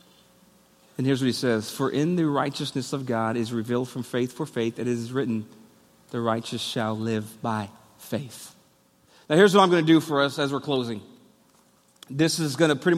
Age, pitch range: 40-59, 125-175 Hz